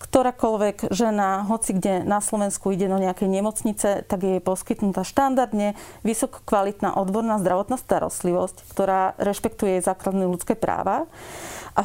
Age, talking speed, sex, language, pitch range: 40-59, 125 wpm, female, Slovak, 190-225 Hz